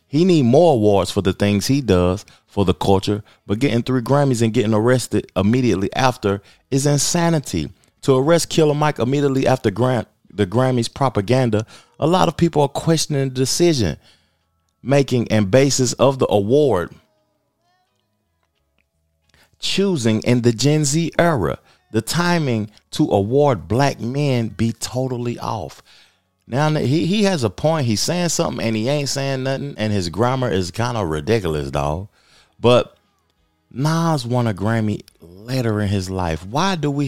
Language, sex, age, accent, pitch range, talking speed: English, male, 30-49, American, 95-140 Hz, 155 wpm